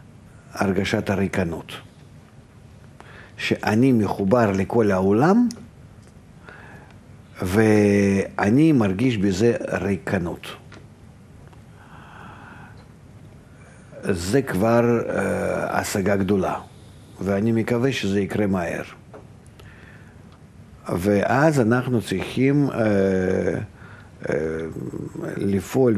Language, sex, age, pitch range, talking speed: Hebrew, male, 50-69, 95-120 Hz, 60 wpm